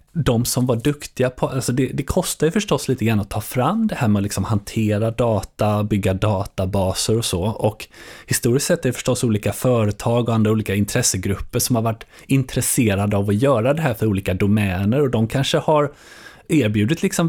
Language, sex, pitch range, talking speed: Swedish, male, 100-125 Hz, 200 wpm